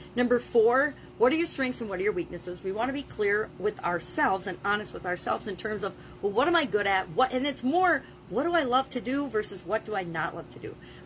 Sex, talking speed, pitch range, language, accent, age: female, 270 wpm, 180-245 Hz, English, American, 40-59